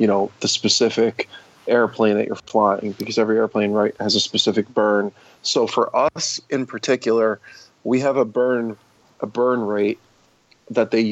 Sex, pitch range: male, 105-120 Hz